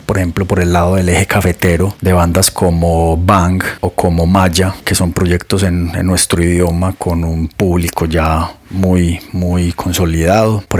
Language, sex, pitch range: Spanish, male, 85-95 Hz